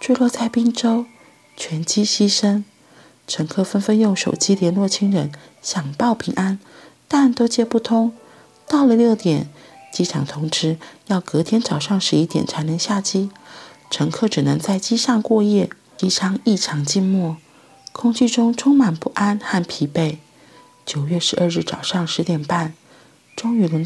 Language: Chinese